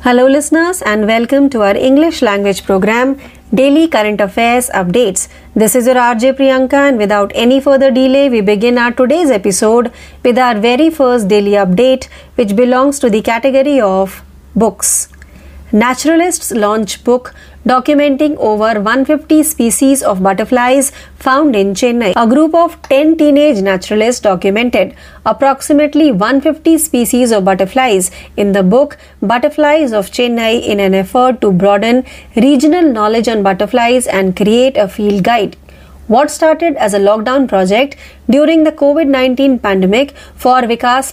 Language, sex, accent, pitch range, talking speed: Marathi, female, native, 210-280 Hz, 140 wpm